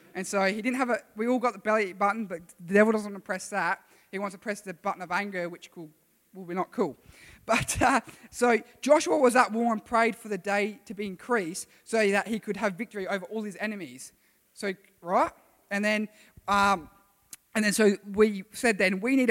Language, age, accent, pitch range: English, 20-39, Australian, 185-215 Hz